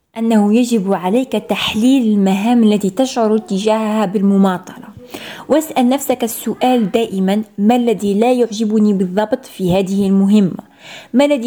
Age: 20-39